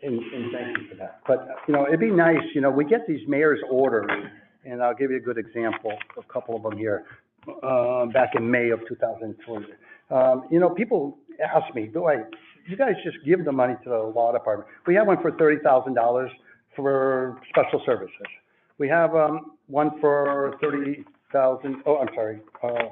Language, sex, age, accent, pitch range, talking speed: English, male, 60-79, American, 125-165 Hz, 195 wpm